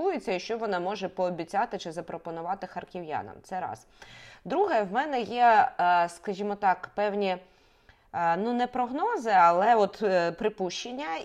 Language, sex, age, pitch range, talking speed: Ukrainian, female, 20-39, 180-240 Hz, 125 wpm